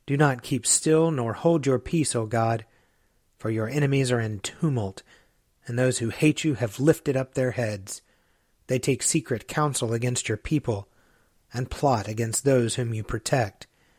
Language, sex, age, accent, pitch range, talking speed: English, male, 30-49, American, 110-140 Hz, 170 wpm